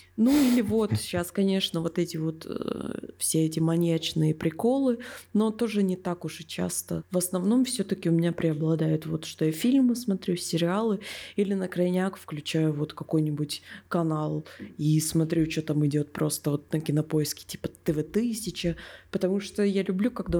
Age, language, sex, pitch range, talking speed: 20-39, Russian, female, 165-205 Hz, 165 wpm